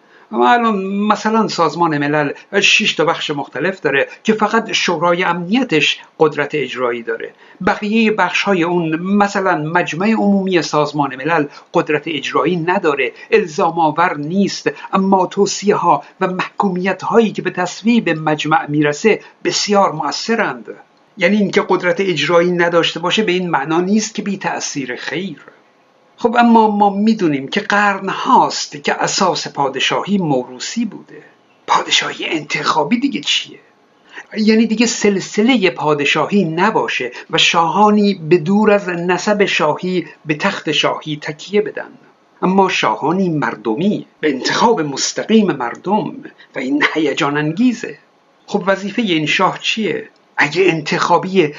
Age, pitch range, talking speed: 60-79, 160-210 Hz, 125 wpm